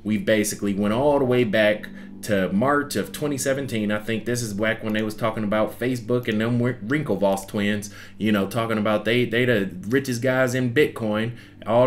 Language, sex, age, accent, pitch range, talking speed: English, male, 20-39, American, 95-120 Hz, 190 wpm